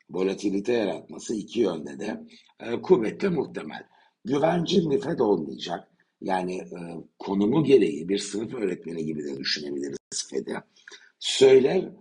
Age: 60-79